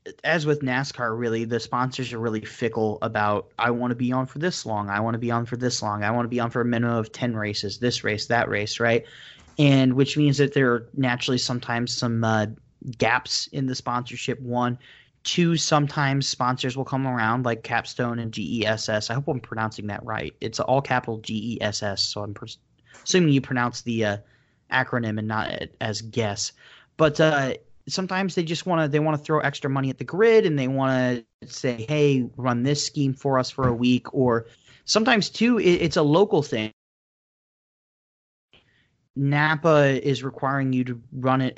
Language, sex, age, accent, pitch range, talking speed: English, male, 30-49, American, 115-145 Hz, 195 wpm